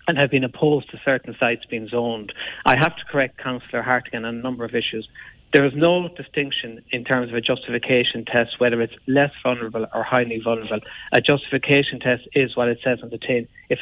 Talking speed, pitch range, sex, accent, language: 210 wpm, 120-145 Hz, male, Irish, English